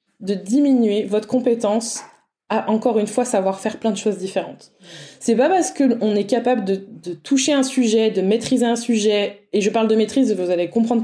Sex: female